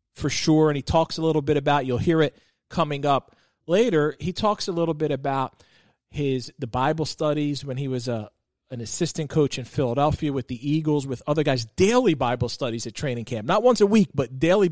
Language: English